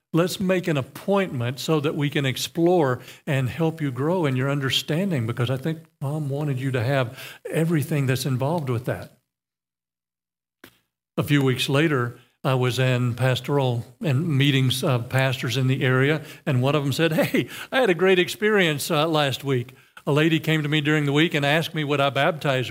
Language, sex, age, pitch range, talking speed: English, male, 50-69, 120-155 Hz, 190 wpm